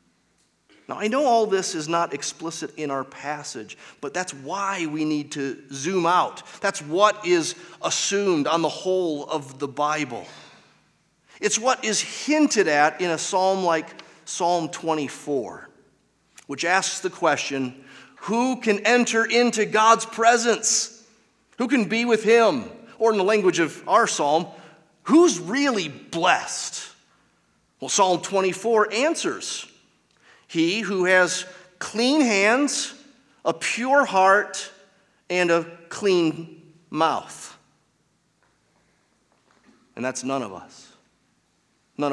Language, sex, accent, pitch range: English, male, American, 140-215 Hz